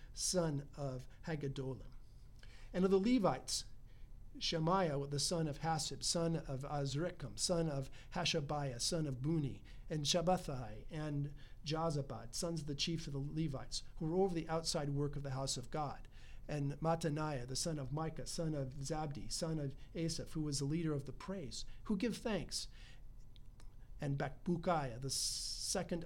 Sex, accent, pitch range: male, American, 125-165 Hz